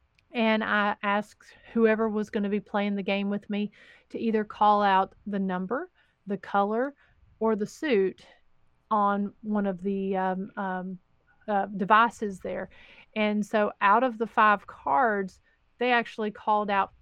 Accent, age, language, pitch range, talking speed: American, 30-49, English, 195-225 Hz, 155 wpm